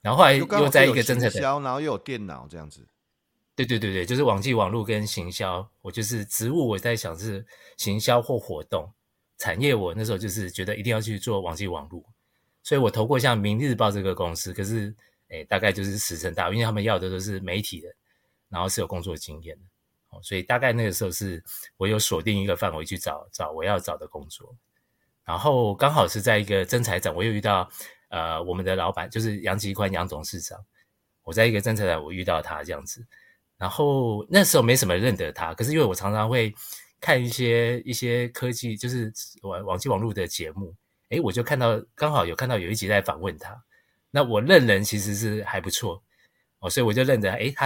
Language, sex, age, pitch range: Chinese, male, 30-49, 95-120 Hz